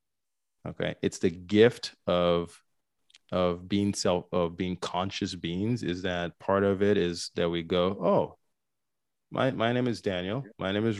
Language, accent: English, American